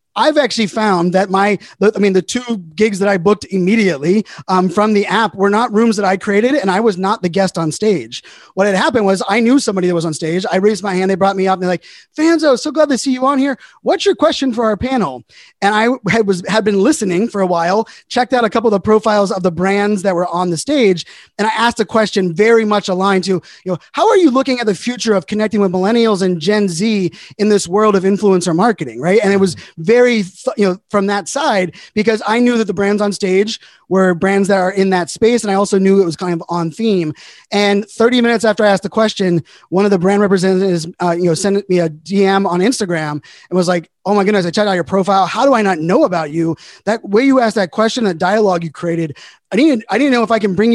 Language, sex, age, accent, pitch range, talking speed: English, male, 30-49, American, 185-220 Hz, 260 wpm